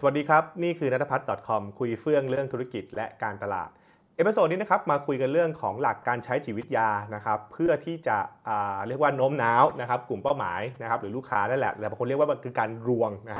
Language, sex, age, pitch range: Thai, male, 20-39, 115-160 Hz